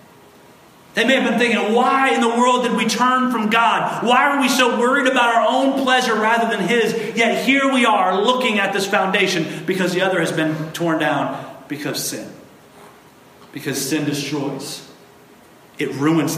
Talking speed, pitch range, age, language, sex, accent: 175 wpm, 155-225 Hz, 40-59, English, male, American